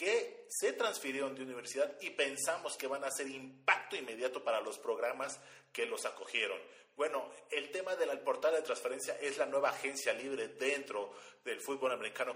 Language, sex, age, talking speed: Spanish, male, 40-59, 170 wpm